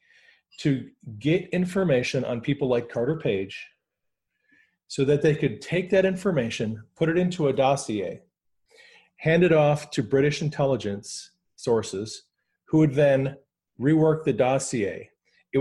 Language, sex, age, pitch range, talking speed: English, male, 40-59, 115-155 Hz, 130 wpm